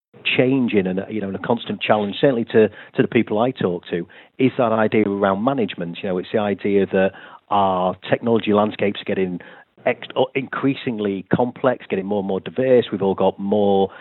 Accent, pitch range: British, 100-120 Hz